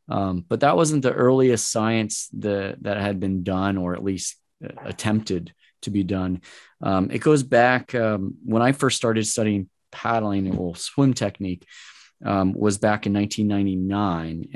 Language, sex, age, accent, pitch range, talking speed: English, male, 20-39, American, 95-115 Hz, 155 wpm